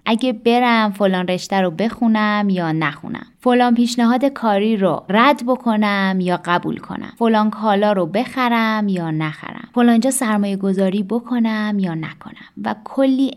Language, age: Persian, 20-39